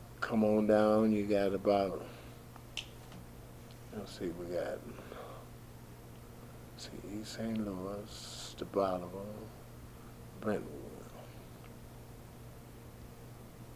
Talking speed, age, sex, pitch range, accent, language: 80 wpm, 60-79, male, 100-120 Hz, American, English